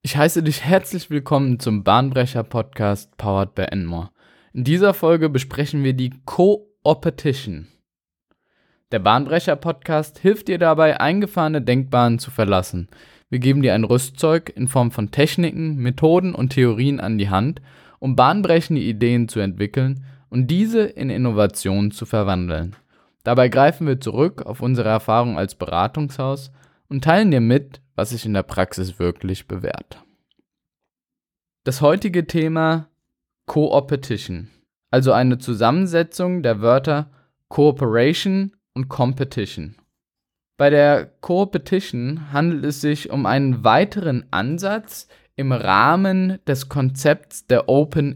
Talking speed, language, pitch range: 125 wpm, German, 115-160 Hz